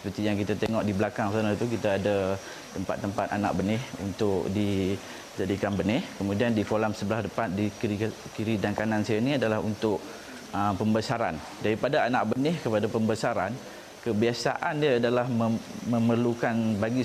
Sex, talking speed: male, 150 wpm